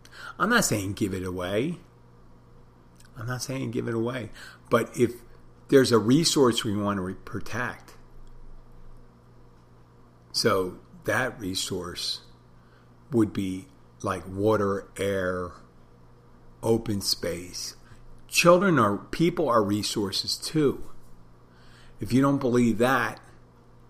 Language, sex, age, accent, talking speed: English, male, 50-69, American, 105 wpm